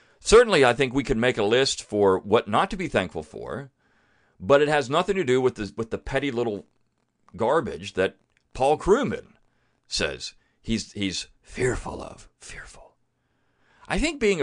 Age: 40-59